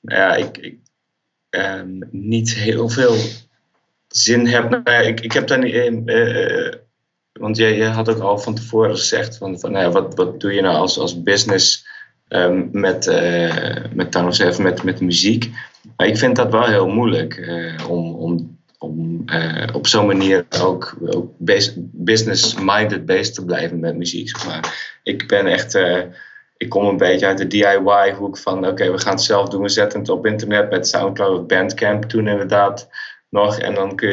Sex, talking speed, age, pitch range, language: male, 185 wpm, 30-49, 95-115 Hz, Dutch